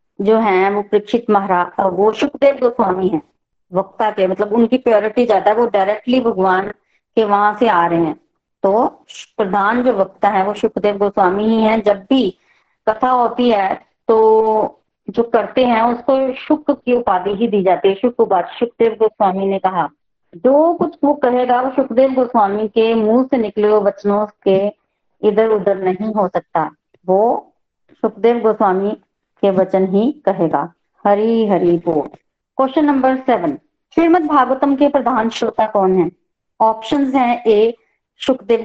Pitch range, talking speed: 205-255 Hz, 155 wpm